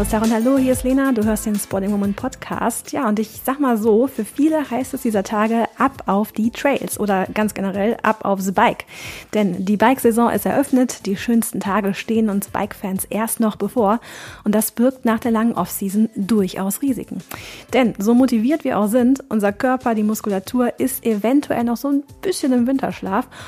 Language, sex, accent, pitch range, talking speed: German, female, German, 200-245 Hz, 185 wpm